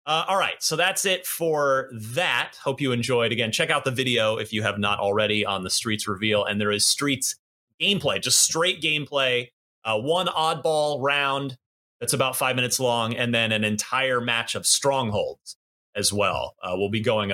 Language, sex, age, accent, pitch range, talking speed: English, male, 30-49, American, 110-170 Hz, 195 wpm